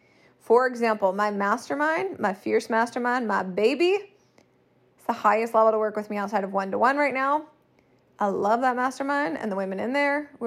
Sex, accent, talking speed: female, American, 185 wpm